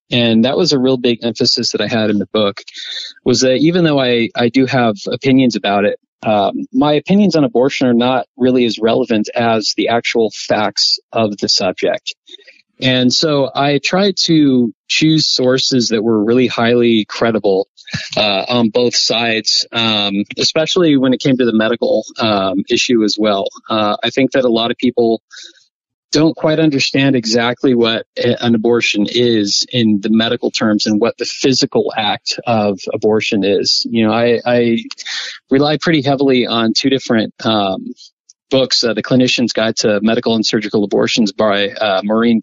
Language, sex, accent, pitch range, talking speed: English, male, American, 110-130 Hz, 170 wpm